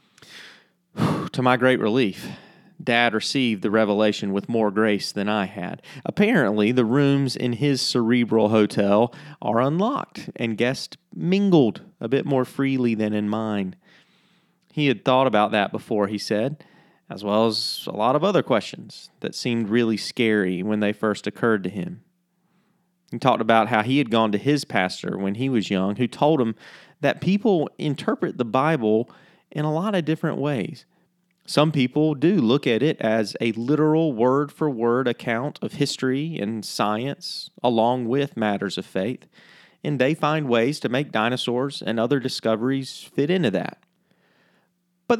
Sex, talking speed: male, 160 wpm